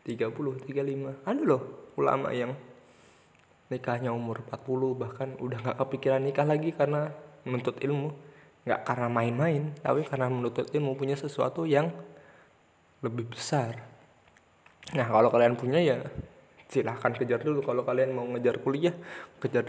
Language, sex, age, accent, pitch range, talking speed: Indonesian, male, 20-39, native, 120-150 Hz, 135 wpm